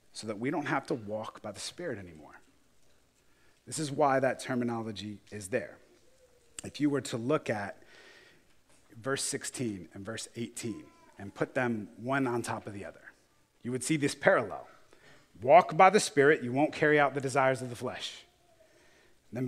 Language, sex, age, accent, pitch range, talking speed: English, male, 30-49, American, 115-150 Hz, 175 wpm